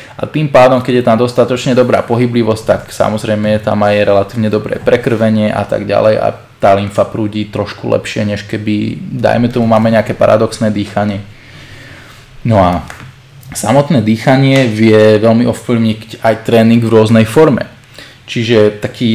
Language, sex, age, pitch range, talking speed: Slovak, male, 20-39, 110-125 Hz, 150 wpm